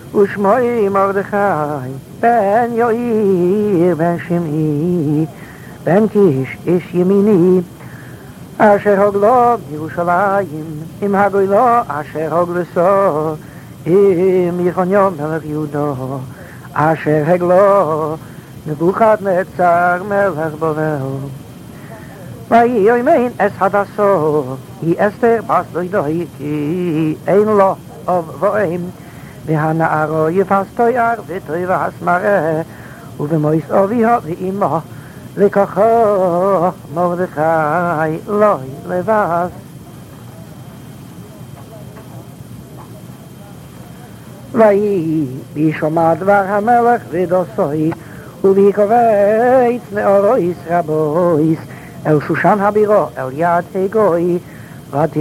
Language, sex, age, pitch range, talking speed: English, male, 60-79, 155-200 Hz, 100 wpm